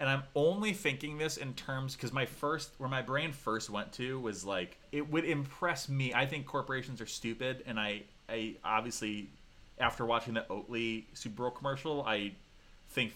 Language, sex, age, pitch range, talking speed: English, male, 20-39, 105-135 Hz, 195 wpm